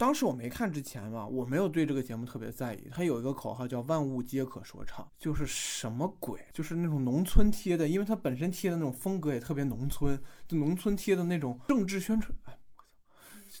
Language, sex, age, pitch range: Chinese, male, 20-39, 120-160 Hz